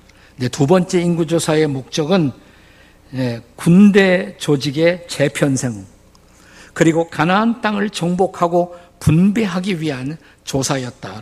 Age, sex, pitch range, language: 50-69, male, 130-180 Hz, Korean